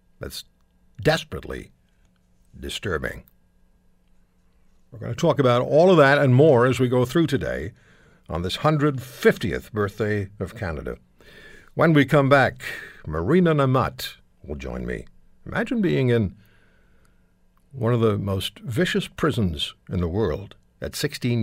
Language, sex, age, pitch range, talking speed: English, male, 60-79, 90-130 Hz, 130 wpm